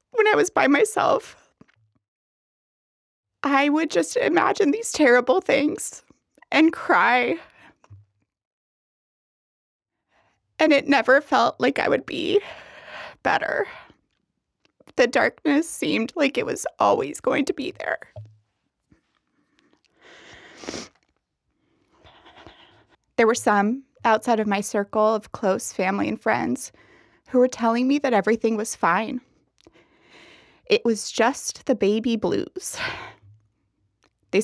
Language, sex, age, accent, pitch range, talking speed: English, female, 30-49, American, 205-285 Hz, 105 wpm